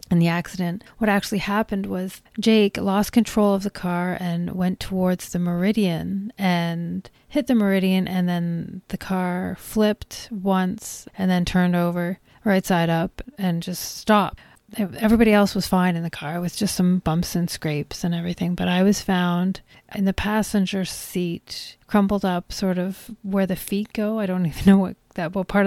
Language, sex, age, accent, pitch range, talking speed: English, female, 30-49, American, 175-200 Hz, 180 wpm